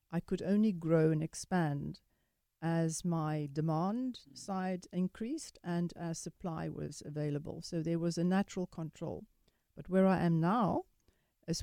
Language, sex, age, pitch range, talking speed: English, female, 50-69, 165-195 Hz, 145 wpm